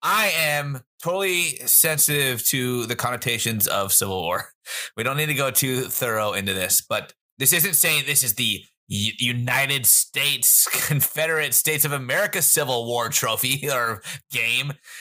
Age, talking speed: 30-49, 150 wpm